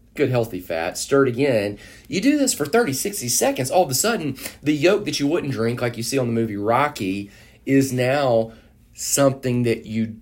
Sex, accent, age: male, American, 40-59